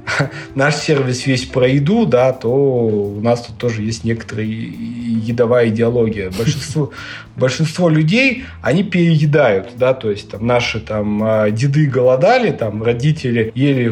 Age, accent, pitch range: 20-39, native, 115-145 Hz